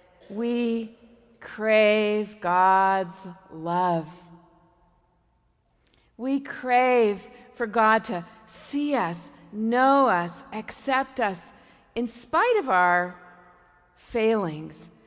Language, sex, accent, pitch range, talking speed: English, female, American, 180-255 Hz, 80 wpm